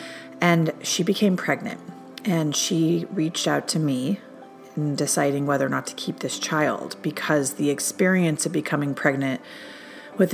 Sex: female